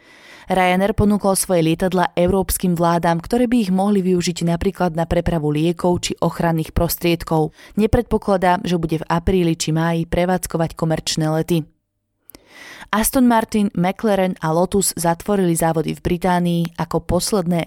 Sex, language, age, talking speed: female, Slovak, 20-39, 130 wpm